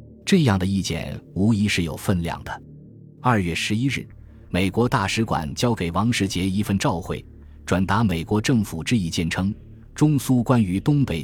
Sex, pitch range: male, 85-115 Hz